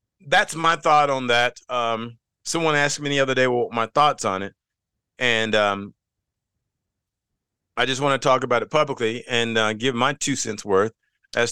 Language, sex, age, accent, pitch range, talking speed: English, male, 40-59, American, 105-145 Hz, 190 wpm